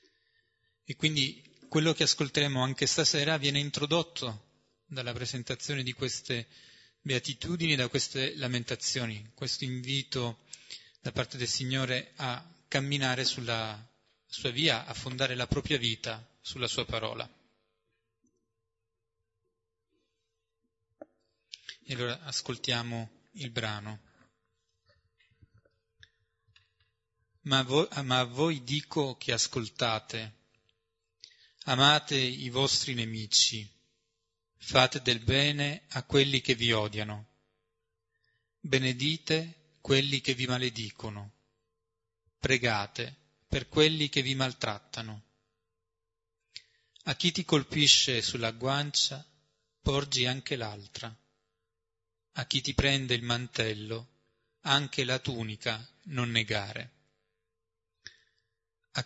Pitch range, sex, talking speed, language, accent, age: 115-140 Hz, male, 90 wpm, Italian, native, 30-49